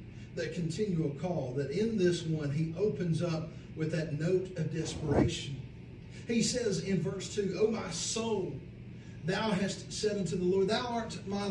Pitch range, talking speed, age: 160-185 Hz, 165 wpm, 40-59